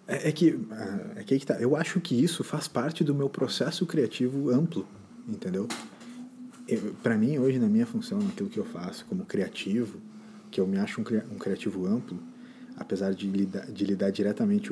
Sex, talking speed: male, 180 wpm